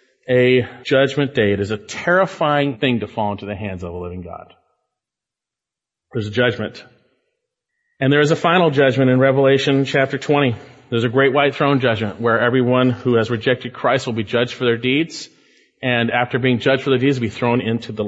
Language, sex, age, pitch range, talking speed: English, male, 40-59, 115-145 Hz, 200 wpm